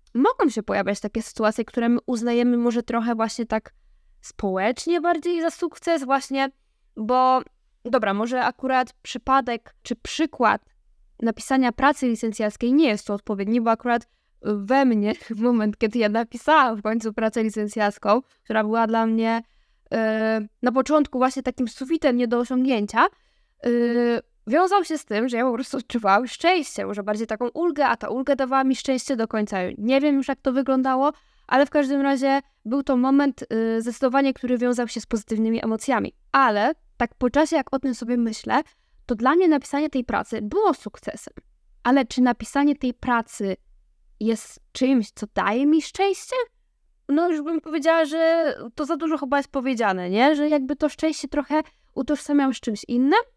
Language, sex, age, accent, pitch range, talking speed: Polish, female, 10-29, native, 225-285 Hz, 170 wpm